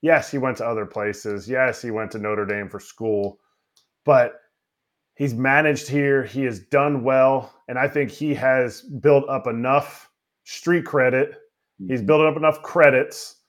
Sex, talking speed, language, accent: male, 165 wpm, English, American